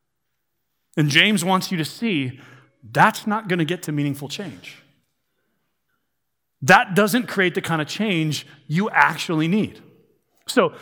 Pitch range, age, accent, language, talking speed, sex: 145-190 Hz, 40-59, American, English, 140 wpm, male